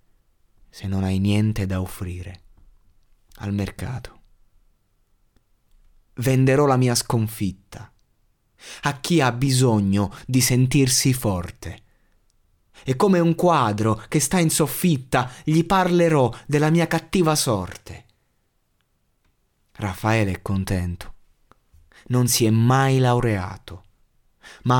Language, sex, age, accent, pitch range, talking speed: Italian, male, 30-49, native, 95-125 Hz, 100 wpm